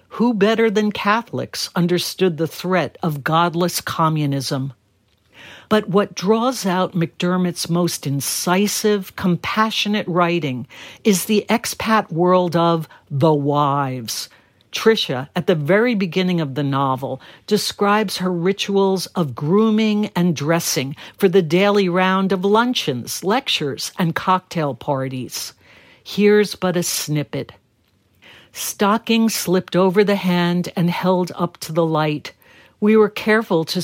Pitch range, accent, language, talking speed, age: 150-200 Hz, American, English, 125 wpm, 60-79